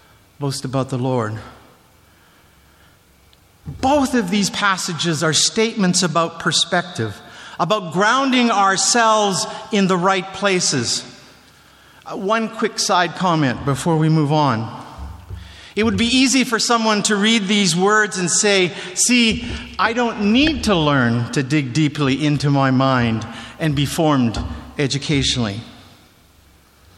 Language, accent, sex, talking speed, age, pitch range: English, American, male, 120 wpm, 50-69, 130-200 Hz